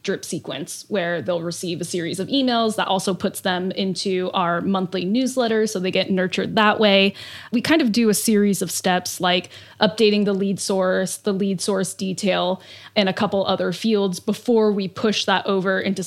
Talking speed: 190 wpm